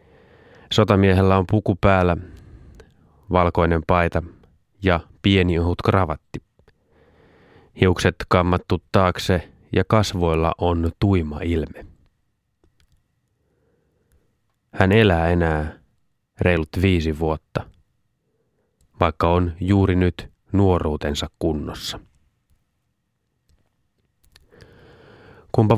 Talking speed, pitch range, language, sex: 70 wpm, 80-100 Hz, Finnish, male